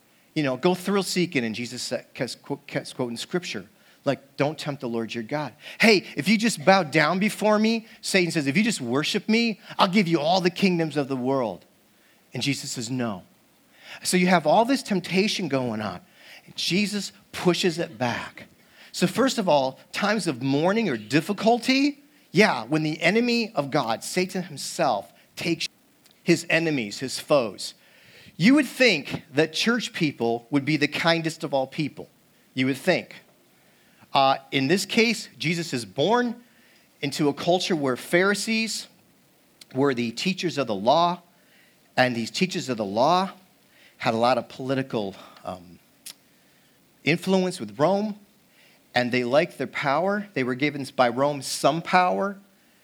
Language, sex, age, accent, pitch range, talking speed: English, male, 40-59, American, 135-195 Hz, 160 wpm